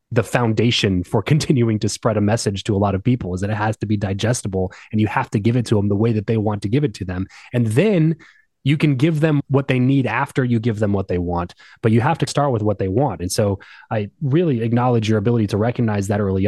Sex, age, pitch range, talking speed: male, 20-39, 105-135 Hz, 270 wpm